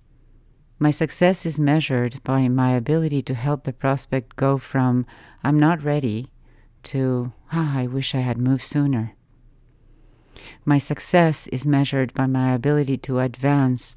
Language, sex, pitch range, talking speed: English, female, 120-140 Hz, 140 wpm